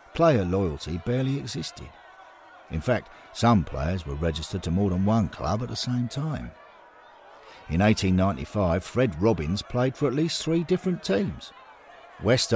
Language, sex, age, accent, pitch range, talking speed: English, male, 50-69, British, 75-120 Hz, 150 wpm